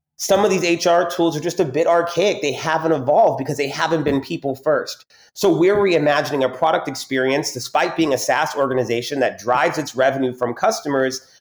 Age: 30-49